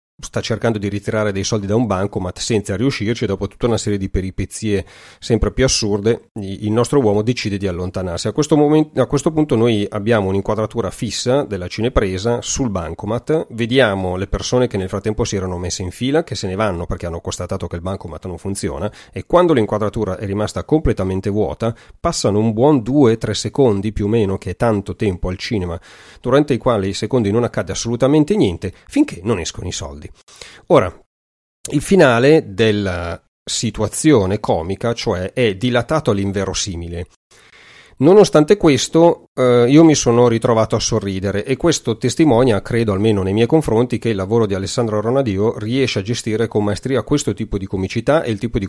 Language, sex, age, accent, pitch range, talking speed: Italian, male, 40-59, native, 100-120 Hz, 180 wpm